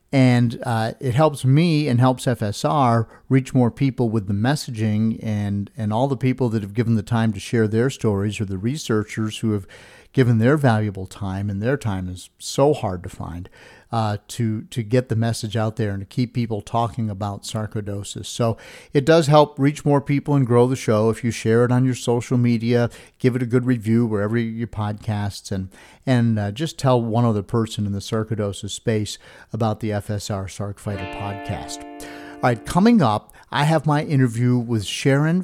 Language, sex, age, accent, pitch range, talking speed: English, male, 50-69, American, 110-135 Hz, 195 wpm